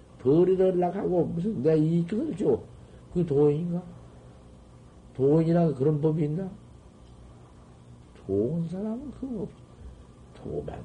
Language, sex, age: Korean, male, 50-69